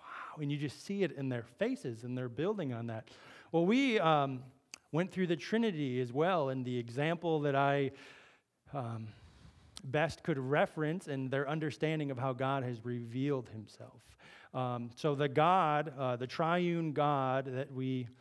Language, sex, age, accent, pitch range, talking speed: English, male, 30-49, American, 135-165 Hz, 160 wpm